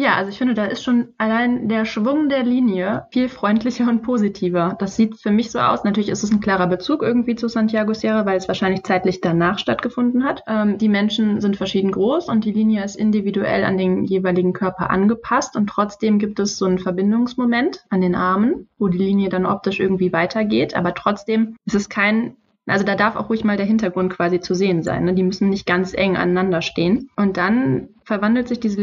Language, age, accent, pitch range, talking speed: German, 20-39, German, 190-220 Hz, 210 wpm